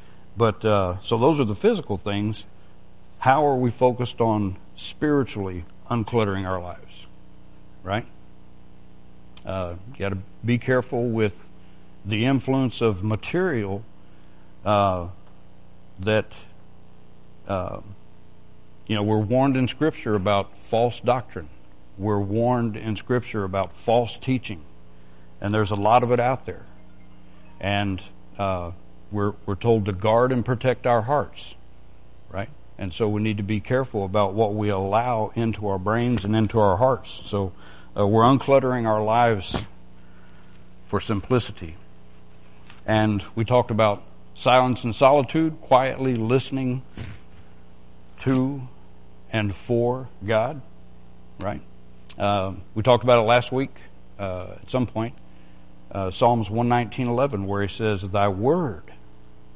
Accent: American